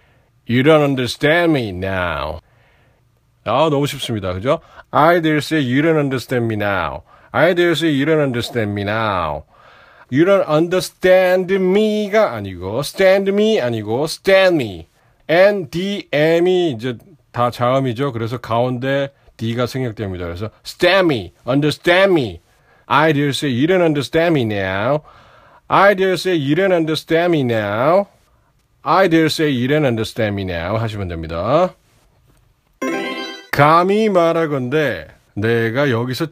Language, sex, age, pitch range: Korean, male, 40-59, 120-175 Hz